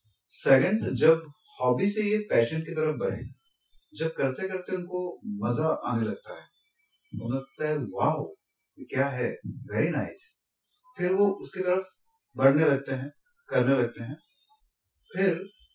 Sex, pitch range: male, 130-205 Hz